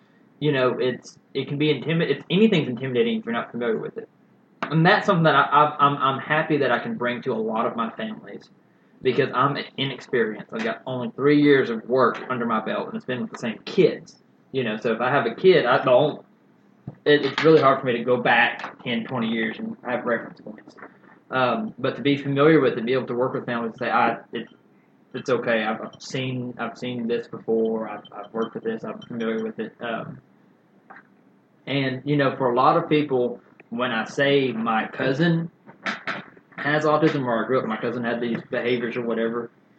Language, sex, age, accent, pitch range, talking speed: English, male, 20-39, American, 120-160 Hz, 215 wpm